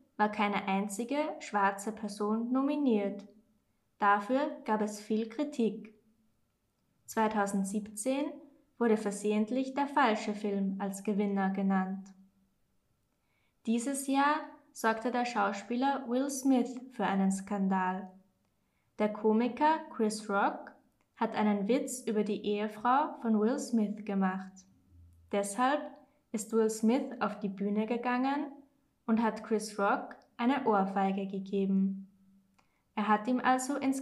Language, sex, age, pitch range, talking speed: German, female, 20-39, 200-250 Hz, 115 wpm